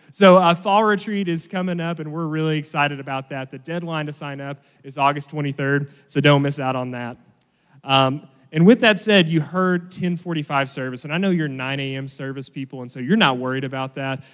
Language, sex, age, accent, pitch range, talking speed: English, male, 30-49, American, 140-175 Hz, 220 wpm